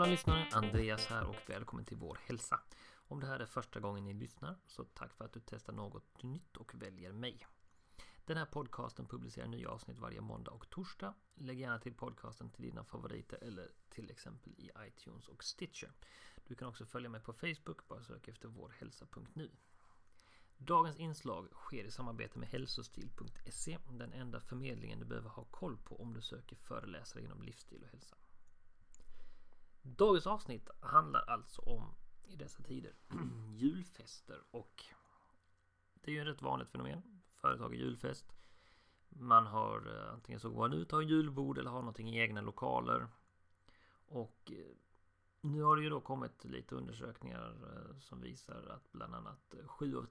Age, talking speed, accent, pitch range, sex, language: 40-59, 165 wpm, native, 85-135 Hz, male, Swedish